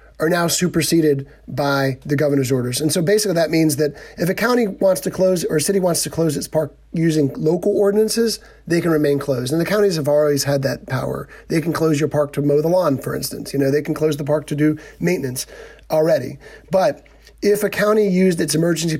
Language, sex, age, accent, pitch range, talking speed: English, male, 30-49, American, 145-185 Hz, 225 wpm